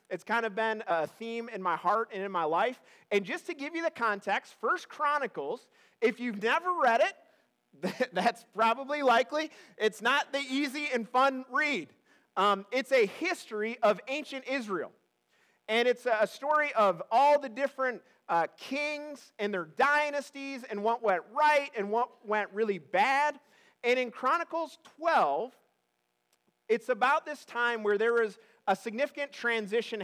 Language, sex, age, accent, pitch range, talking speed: English, male, 30-49, American, 210-280 Hz, 160 wpm